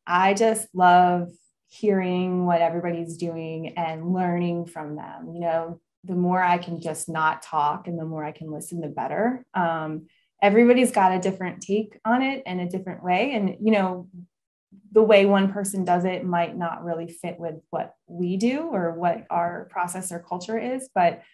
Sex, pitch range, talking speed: female, 170-205 Hz, 185 wpm